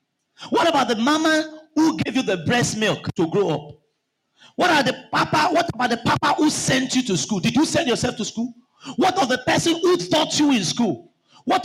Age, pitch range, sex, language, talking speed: 40-59, 225-320 Hz, male, English, 215 wpm